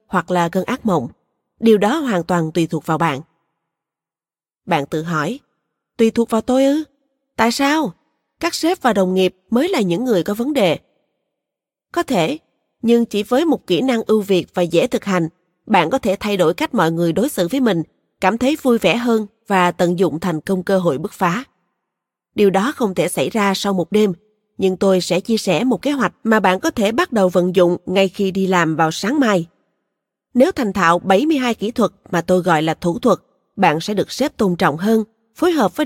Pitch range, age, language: 180-235 Hz, 20-39, Vietnamese